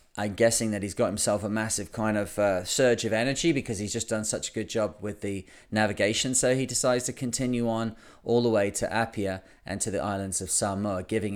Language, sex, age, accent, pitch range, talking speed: English, male, 30-49, British, 100-120 Hz, 225 wpm